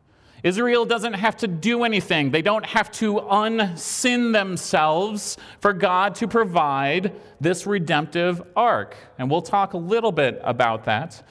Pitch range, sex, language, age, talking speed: 145-205 Hz, male, English, 30-49, 145 wpm